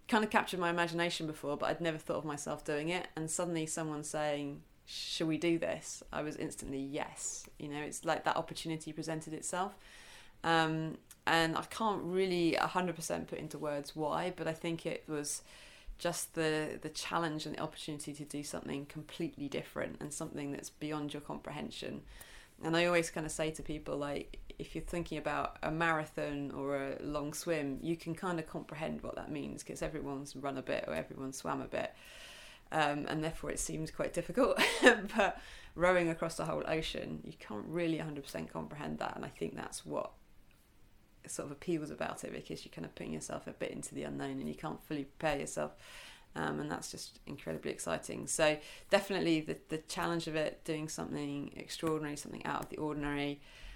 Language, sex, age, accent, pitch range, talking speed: English, female, 20-39, British, 145-165 Hz, 190 wpm